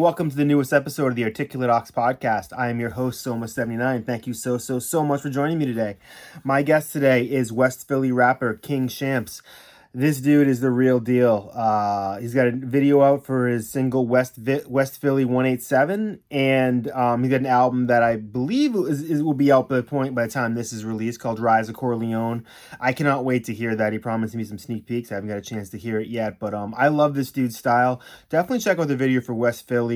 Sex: male